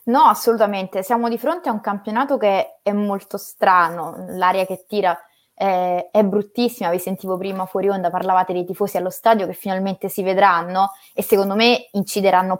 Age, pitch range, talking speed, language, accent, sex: 20-39, 185-220 Hz, 170 wpm, Italian, native, female